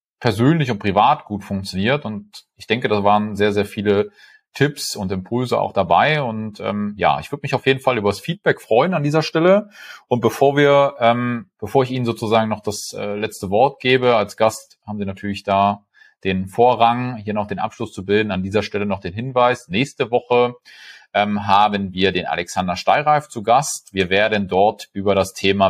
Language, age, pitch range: German, 30-49, 95-120 Hz